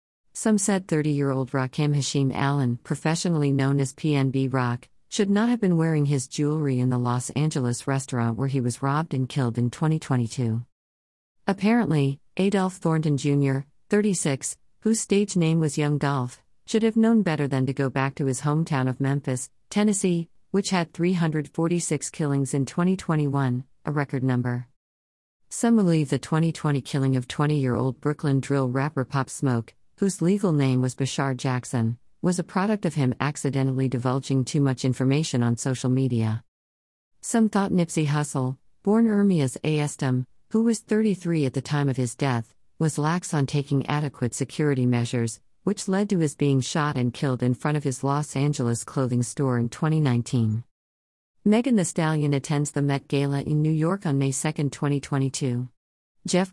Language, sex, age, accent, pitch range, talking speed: English, female, 40-59, American, 130-160 Hz, 160 wpm